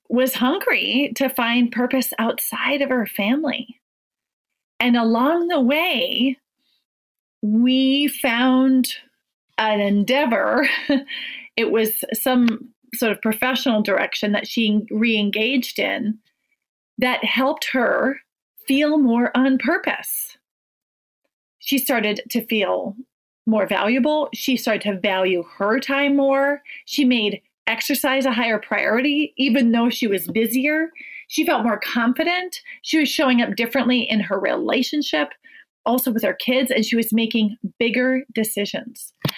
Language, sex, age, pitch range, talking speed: English, female, 30-49, 225-275 Hz, 125 wpm